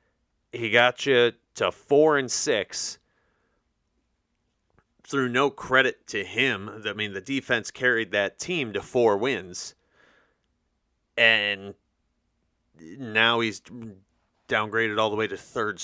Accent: American